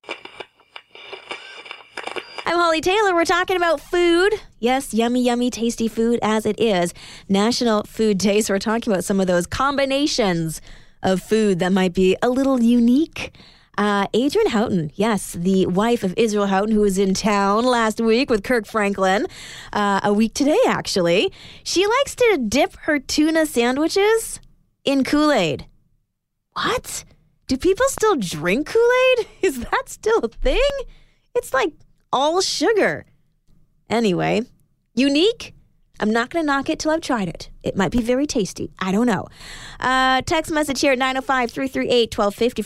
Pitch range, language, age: 195-275 Hz, English, 20-39